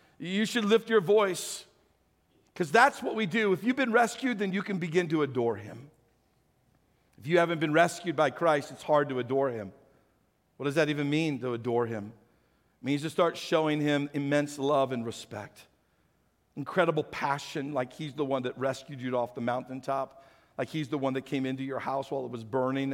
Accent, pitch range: American, 130-210 Hz